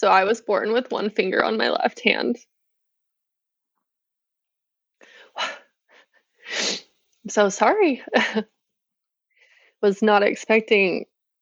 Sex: female